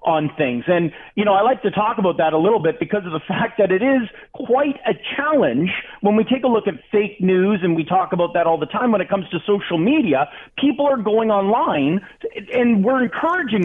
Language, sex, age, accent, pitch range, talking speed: English, male, 40-59, American, 165-220 Hz, 235 wpm